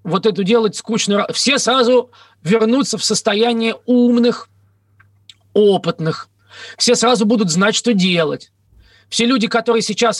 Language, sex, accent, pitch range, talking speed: Russian, male, native, 175-230 Hz, 125 wpm